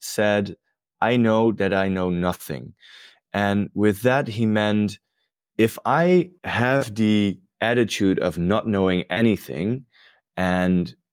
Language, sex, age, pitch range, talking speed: English, male, 20-39, 95-120 Hz, 120 wpm